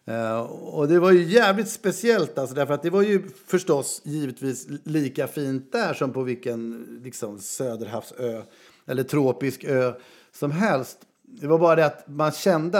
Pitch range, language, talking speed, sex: 130-170 Hz, Swedish, 160 wpm, male